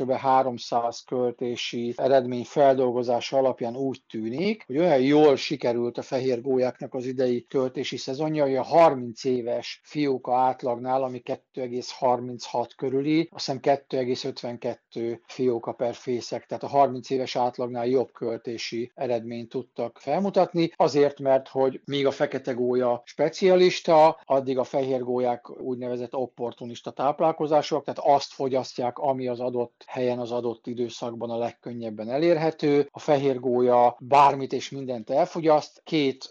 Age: 50-69